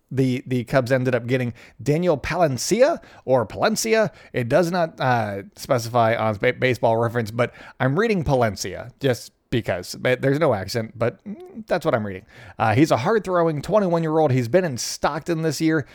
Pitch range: 120-160 Hz